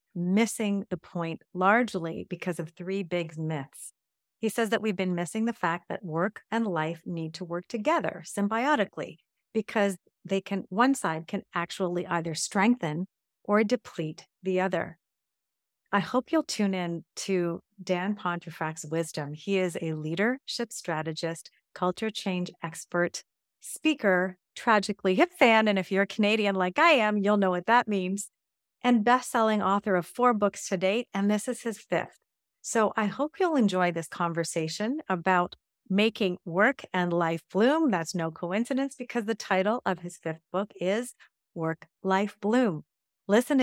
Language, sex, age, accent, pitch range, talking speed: English, female, 40-59, American, 175-225 Hz, 155 wpm